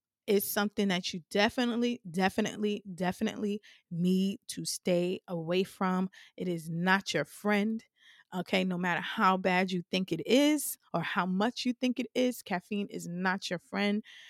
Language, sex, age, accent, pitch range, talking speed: English, female, 20-39, American, 180-215 Hz, 160 wpm